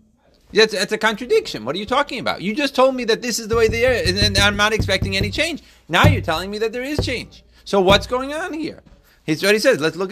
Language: English